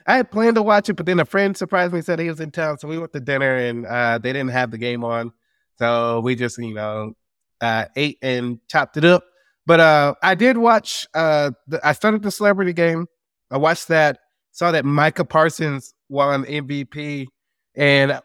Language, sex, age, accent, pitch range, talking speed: English, male, 20-39, American, 140-190 Hz, 205 wpm